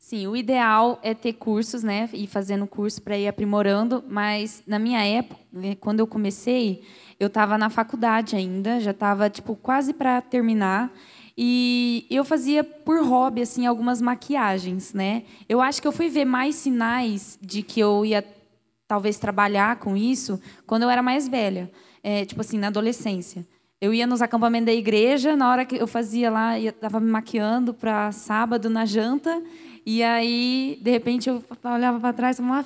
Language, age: Portuguese, 10-29